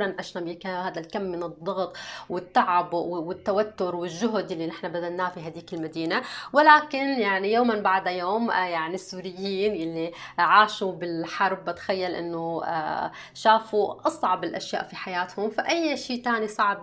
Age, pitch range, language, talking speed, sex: 20-39, 175-215 Hz, Arabic, 125 wpm, female